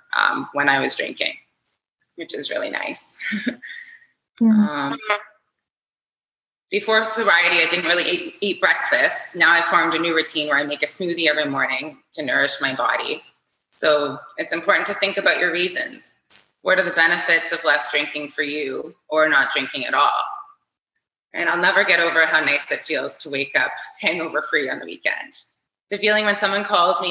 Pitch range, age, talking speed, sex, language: 155-215 Hz, 20-39, 175 wpm, female, English